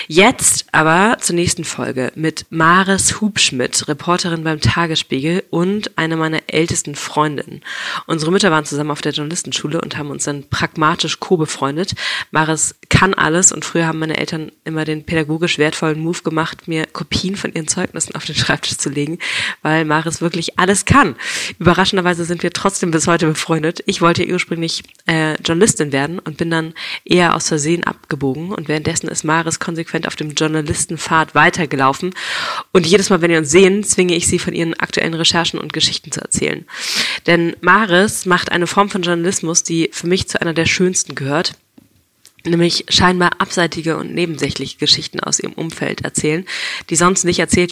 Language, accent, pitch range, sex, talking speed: German, German, 155-180 Hz, female, 170 wpm